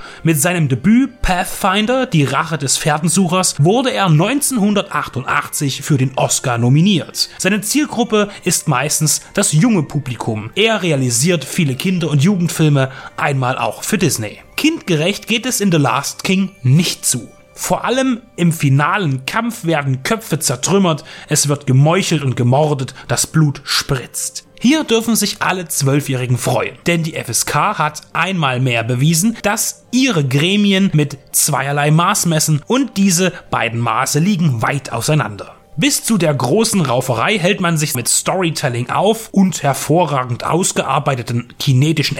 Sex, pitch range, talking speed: male, 140-190 Hz, 140 wpm